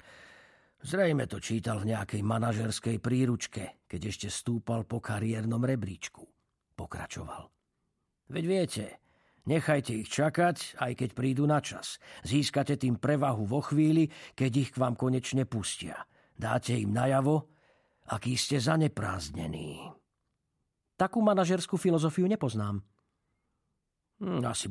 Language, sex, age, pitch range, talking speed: Slovak, male, 50-69, 110-145 Hz, 110 wpm